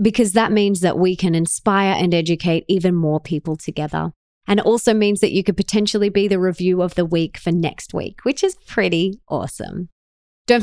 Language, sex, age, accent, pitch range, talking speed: English, female, 20-39, Australian, 175-215 Hz, 200 wpm